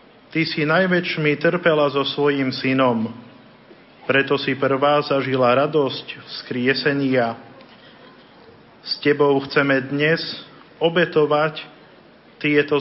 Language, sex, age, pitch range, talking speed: Slovak, male, 40-59, 130-155 Hz, 90 wpm